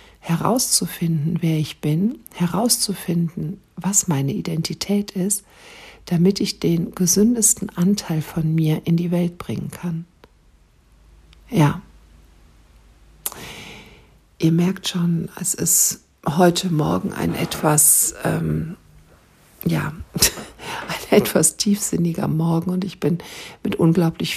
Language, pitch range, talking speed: German, 165-195 Hz, 95 wpm